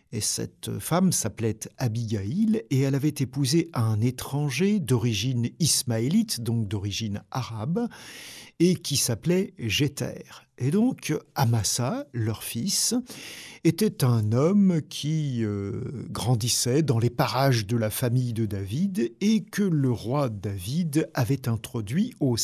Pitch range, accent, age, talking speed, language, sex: 115-170 Hz, French, 50-69, 125 wpm, French, male